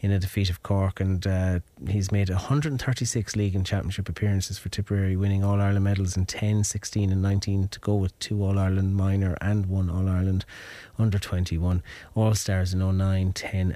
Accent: Irish